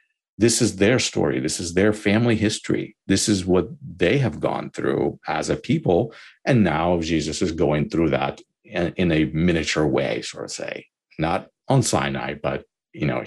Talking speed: 175 wpm